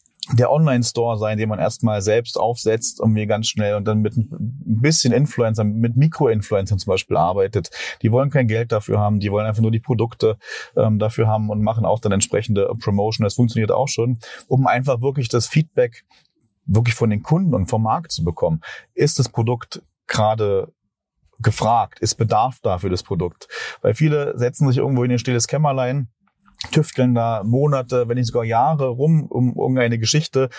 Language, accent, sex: German, German, male